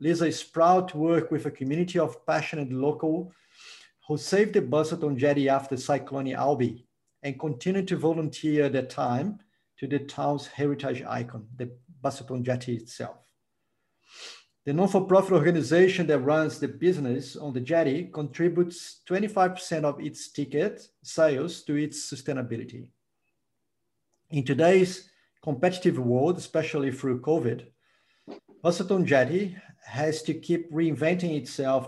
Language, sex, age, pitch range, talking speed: English, male, 50-69, 135-170 Hz, 130 wpm